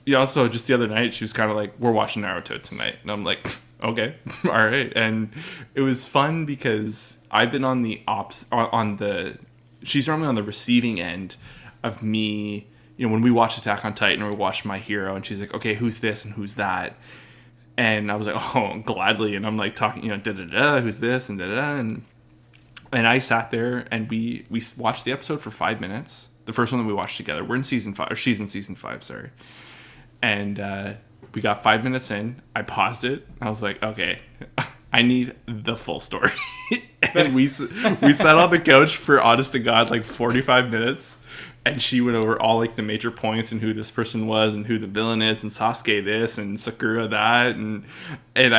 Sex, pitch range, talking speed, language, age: male, 105-125 Hz, 215 wpm, English, 20-39